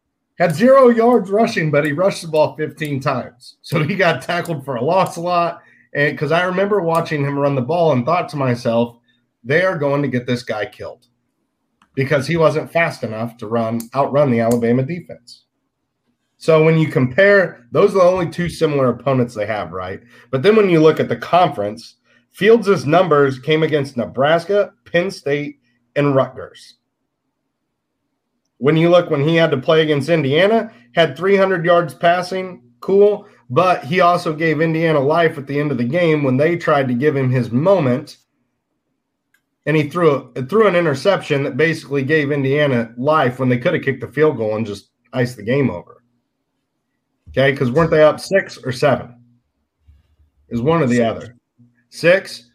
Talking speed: 180 wpm